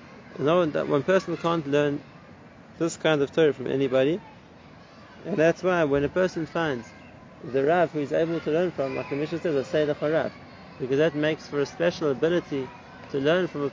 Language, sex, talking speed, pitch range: English, male, 200 wpm, 130-165 Hz